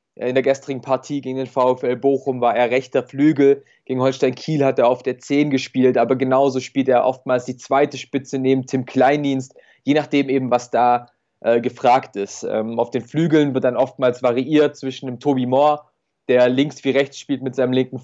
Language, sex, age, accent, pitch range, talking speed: German, male, 20-39, German, 125-140 Hz, 200 wpm